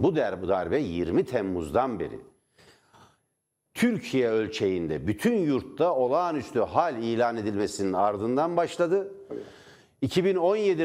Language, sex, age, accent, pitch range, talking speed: Turkish, male, 60-79, native, 125-170 Hz, 90 wpm